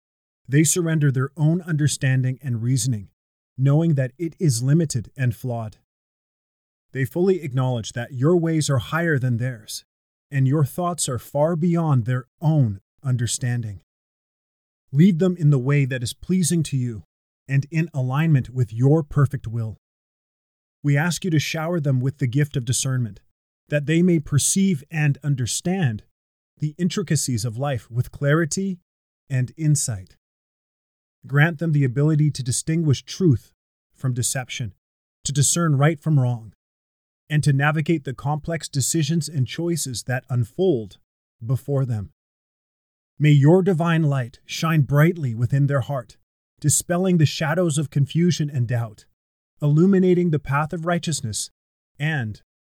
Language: English